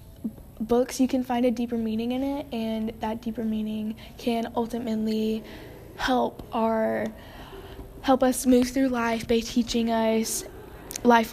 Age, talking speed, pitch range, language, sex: 10-29, 140 wpm, 215-235 Hz, English, female